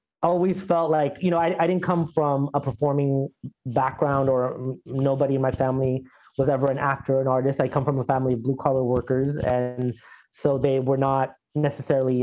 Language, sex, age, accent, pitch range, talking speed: English, male, 30-49, American, 130-160 Hz, 195 wpm